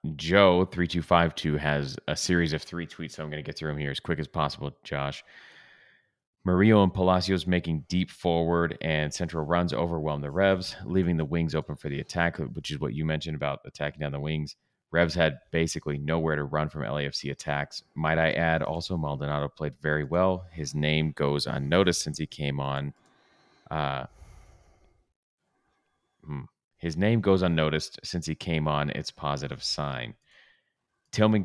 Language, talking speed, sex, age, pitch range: English, 170 wpm, male, 30-49, 75-85 Hz